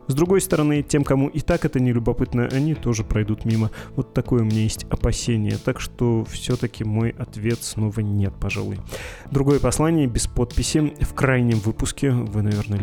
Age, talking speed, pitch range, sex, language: 20-39, 170 wpm, 110-125 Hz, male, Russian